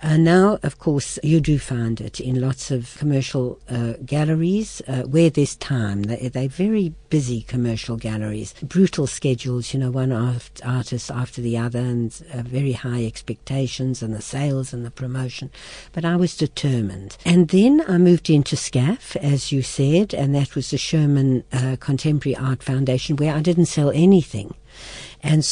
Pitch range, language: 130-165 Hz, English